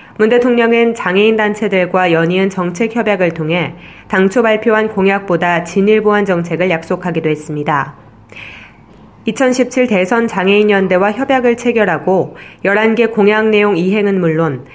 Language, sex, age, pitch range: Korean, female, 20-39, 175-215 Hz